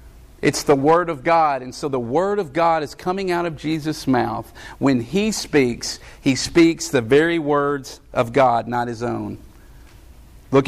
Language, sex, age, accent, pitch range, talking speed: English, male, 50-69, American, 125-200 Hz, 175 wpm